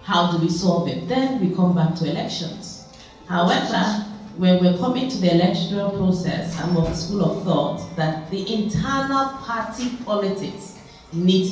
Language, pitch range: English, 160-205 Hz